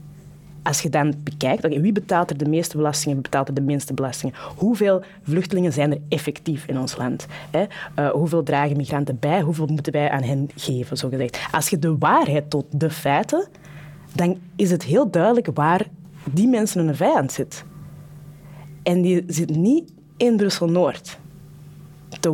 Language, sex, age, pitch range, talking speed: Dutch, female, 20-39, 150-185 Hz, 170 wpm